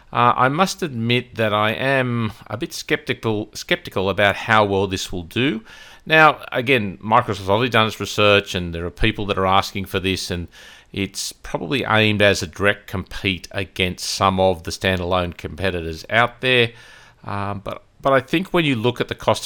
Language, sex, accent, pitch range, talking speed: English, male, Australian, 95-115 Hz, 185 wpm